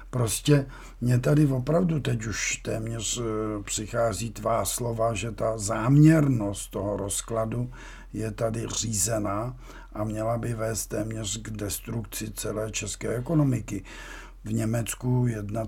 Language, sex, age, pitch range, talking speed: Czech, male, 50-69, 105-115 Hz, 120 wpm